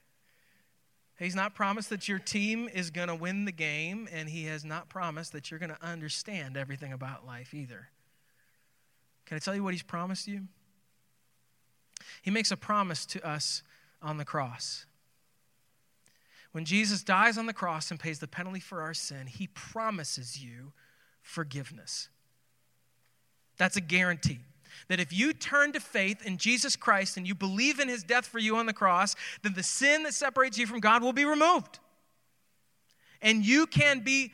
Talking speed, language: 170 wpm, English